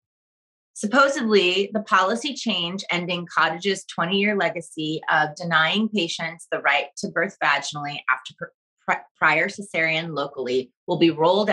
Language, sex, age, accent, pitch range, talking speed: English, female, 30-49, American, 165-210 Hz, 120 wpm